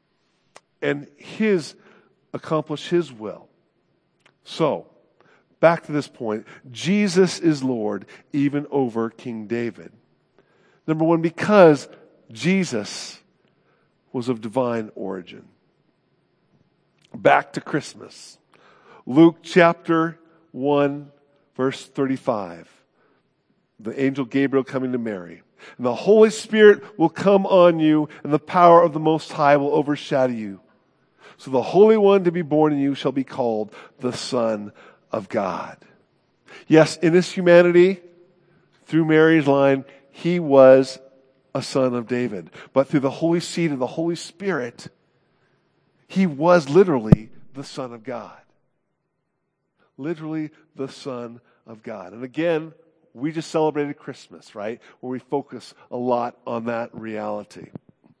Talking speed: 125 wpm